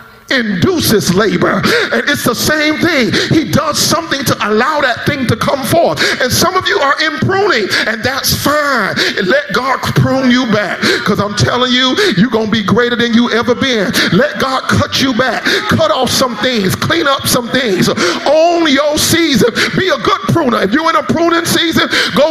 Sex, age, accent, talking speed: male, 40-59, American, 195 wpm